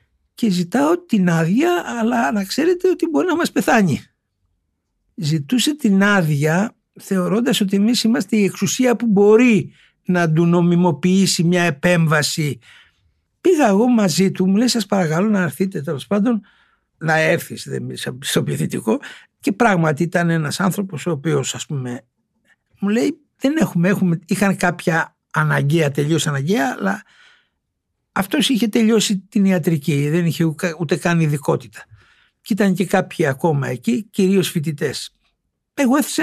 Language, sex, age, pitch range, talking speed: Greek, male, 60-79, 165-235 Hz, 140 wpm